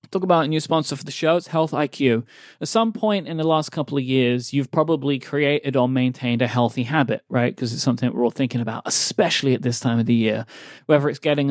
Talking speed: 240 wpm